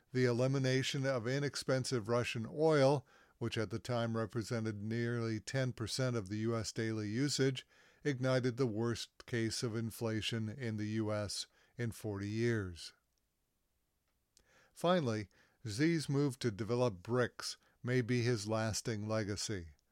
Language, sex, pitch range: English, male, 110-130 Hz